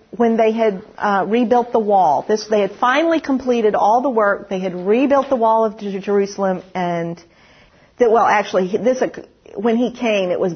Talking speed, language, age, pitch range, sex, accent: 190 wpm, English, 40-59, 180-235 Hz, female, American